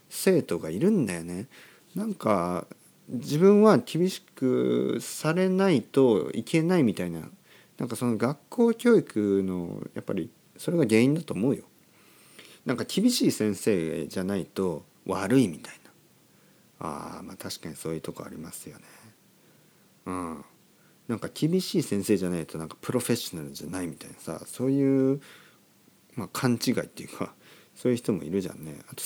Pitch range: 95-150 Hz